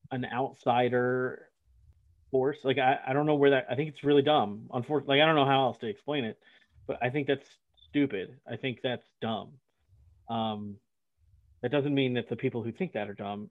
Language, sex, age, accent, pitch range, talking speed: English, male, 30-49, American, 110-140 Hz, 200 wpm